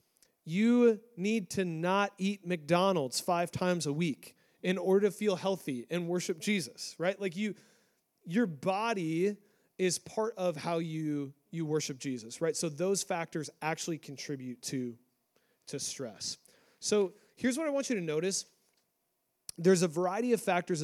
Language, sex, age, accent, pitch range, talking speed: English, male, 30-49, American, 150-190 Hz, 155 wpm